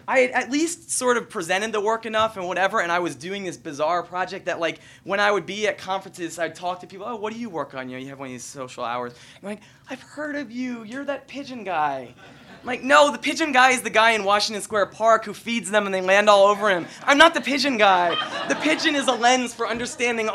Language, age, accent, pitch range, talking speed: English, 20-39, American, 160-240 Hz, 260 wpm